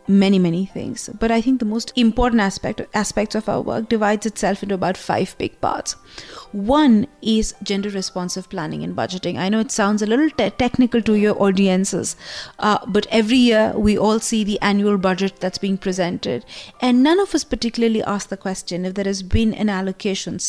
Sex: female